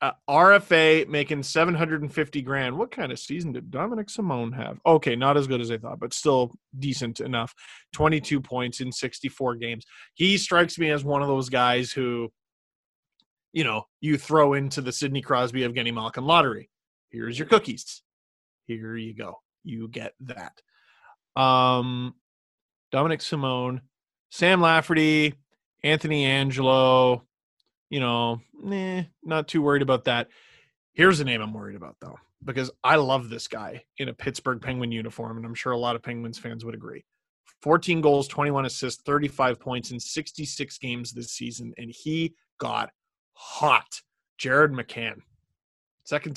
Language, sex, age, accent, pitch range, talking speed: English, male, 30-49, American, 120-155 Hz, 155 wpm